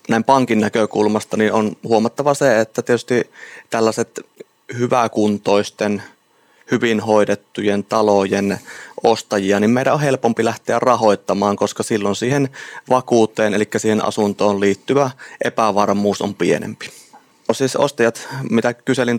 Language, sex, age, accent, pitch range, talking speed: Finnish, male, 20-39, native, 105-115 Hz, 115 wpm